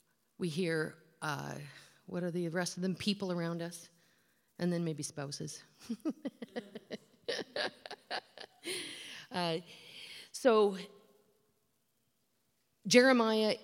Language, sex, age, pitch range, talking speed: English, female, 40-59, 170-230 Hz, 85 wpm